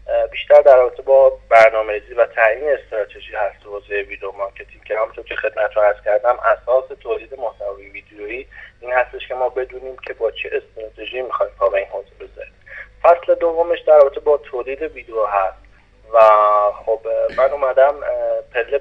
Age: 30-49